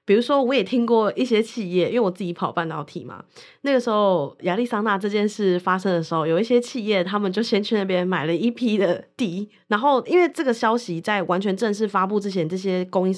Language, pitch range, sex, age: Chinese, 175-225 Hz, female, 20-39